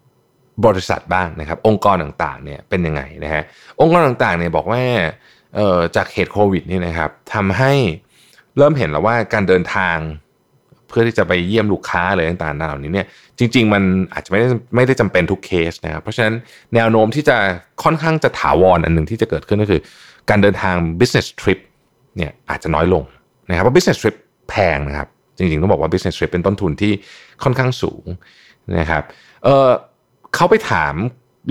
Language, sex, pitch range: Thai, male, 85-120 Hz